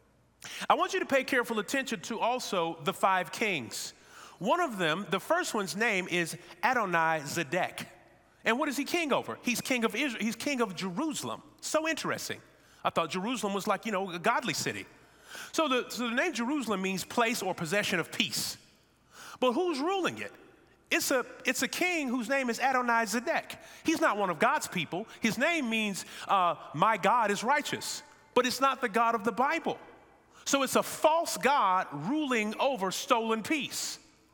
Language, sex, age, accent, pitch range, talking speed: English, male, 40-59, American, 175-255 Hz, 185 wpm